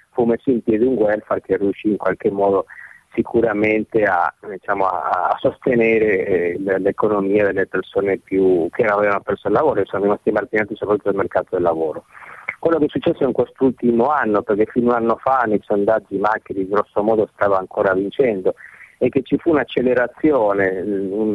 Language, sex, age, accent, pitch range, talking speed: Italian, male, 30-49, native, 100-125 Hz, 175 wpm